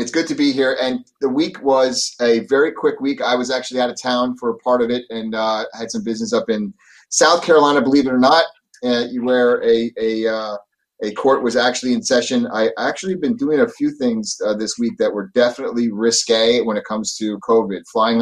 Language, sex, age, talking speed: English, male, 30-49, 225 wpm